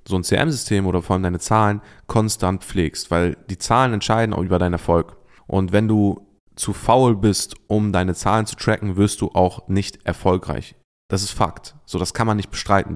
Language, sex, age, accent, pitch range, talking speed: German, male, 20-39, German, 90-110 Hz, 200 wpm